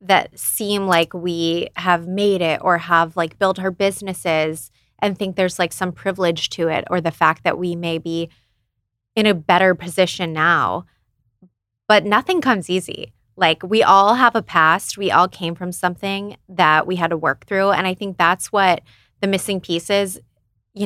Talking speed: 180 wpm